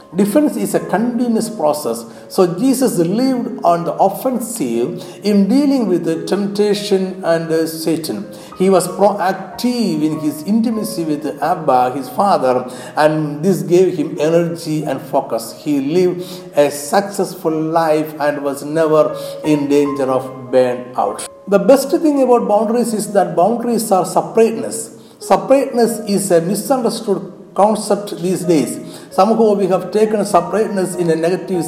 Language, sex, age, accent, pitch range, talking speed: Malayalam, male, 60-79, native, 155-210 Hz, 140 wpm